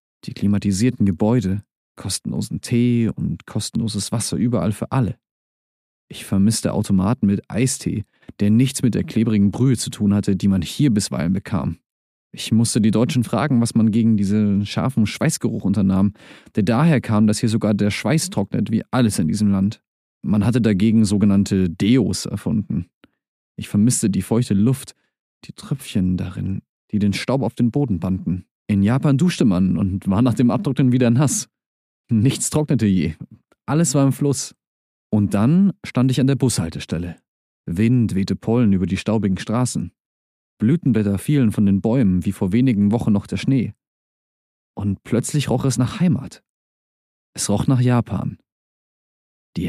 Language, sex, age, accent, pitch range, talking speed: German, male, 30-49, German, 100-130 Hz, 160 wpm